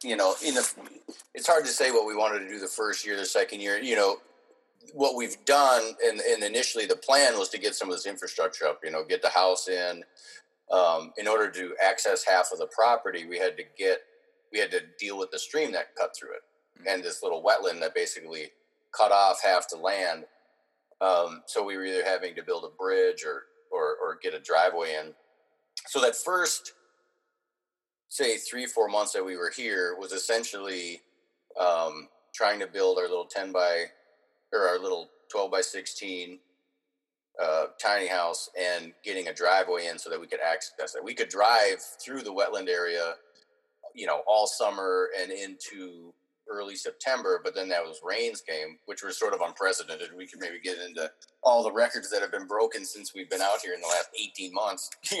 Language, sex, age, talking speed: English, male, 40-59, 200 wpm